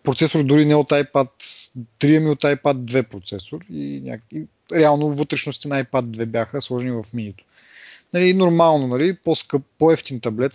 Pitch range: 115-160 Hz